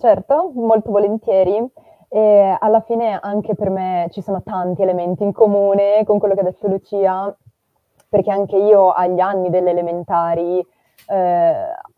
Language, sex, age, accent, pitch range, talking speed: Italian, female, 20-39, native, 180-210 Hz, 145 wpm